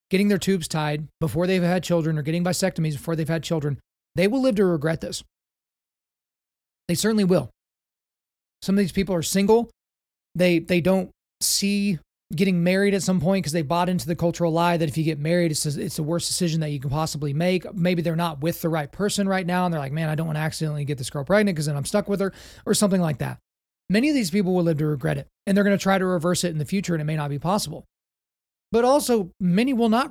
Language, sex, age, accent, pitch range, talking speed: English, male, 30-49, American, 155-190 Hz, 245 wpm